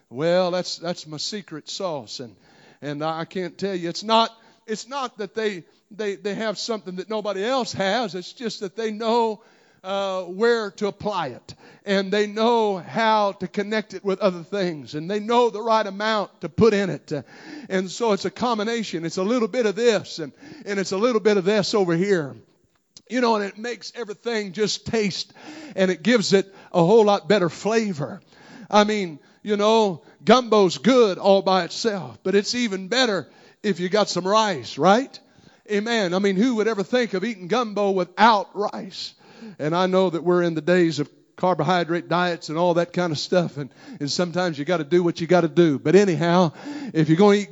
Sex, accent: male, American